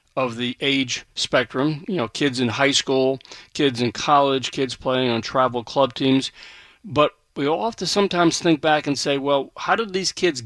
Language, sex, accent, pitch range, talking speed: English, male, American, 125-175 Hz, 195 wpm